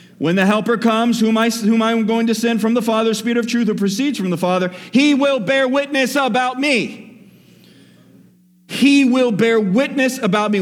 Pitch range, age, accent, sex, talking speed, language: 145-215 Hz, 40-59, American, male, 190 wpm, English